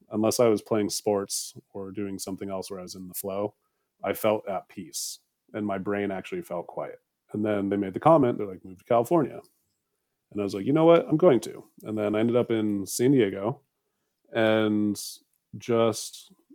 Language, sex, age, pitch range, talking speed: English, male, 30-49, 100-115 Hz, 205 wpm